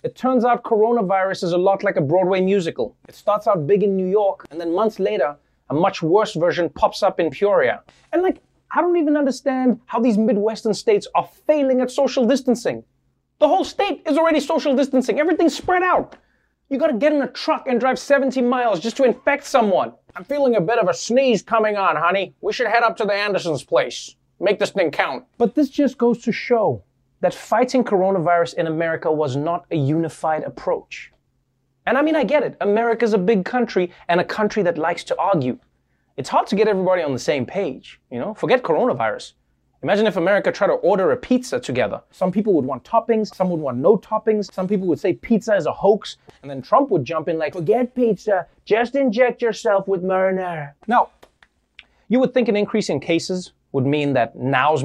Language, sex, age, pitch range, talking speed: English, male, 30-49, 185-255 Hz, 210 wpm